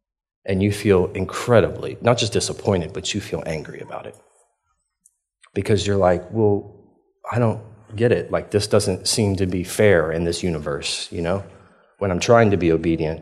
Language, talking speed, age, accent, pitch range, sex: English, 175 wpm, 30-49, American, 90-105 Hz, male